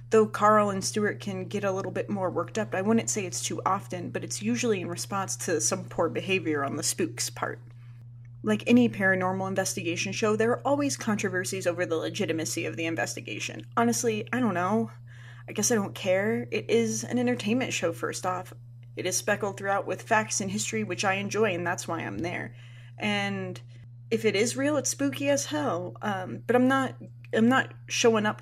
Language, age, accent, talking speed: English, 30-49, American, 200 wpm